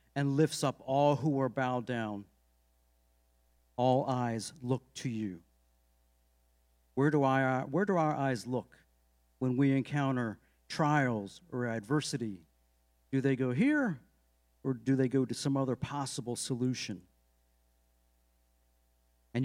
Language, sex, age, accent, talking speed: English, male, 50-69, American, 120 wpm